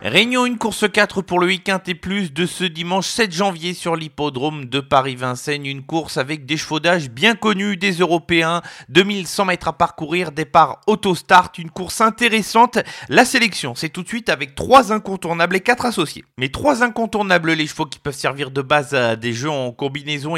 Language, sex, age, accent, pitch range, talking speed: French, male, 30-49, French, 145-185 Hz, 190 wpm